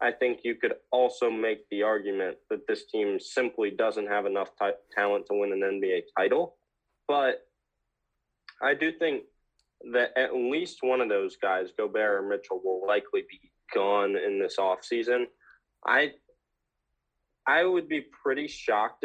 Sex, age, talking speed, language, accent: male, 20-39, 150 wpm, English, American